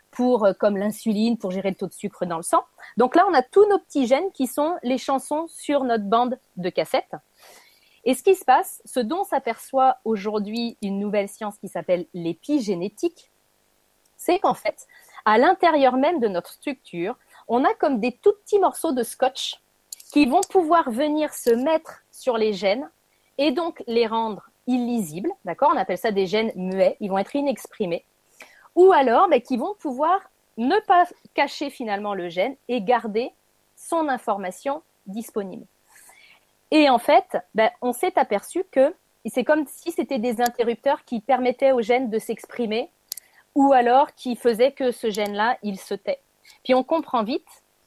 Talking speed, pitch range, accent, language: 175 wpm, 225-300 Hz, French, French